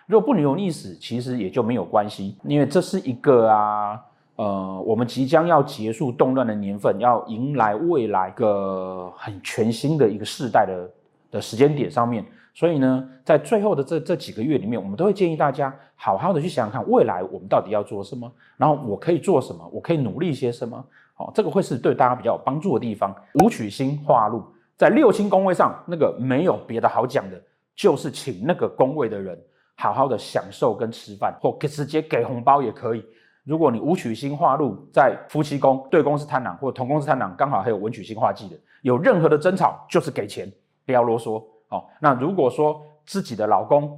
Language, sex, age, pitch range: Chinese, male, 30-49, 110-155 Hz